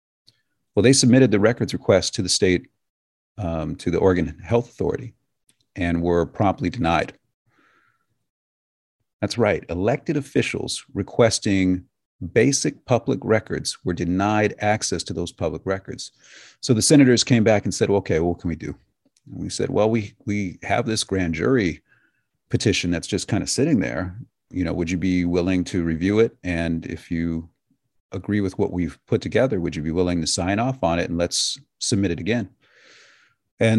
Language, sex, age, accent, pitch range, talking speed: English, male, 40-59, American, 85-115 Hz, 170 wpm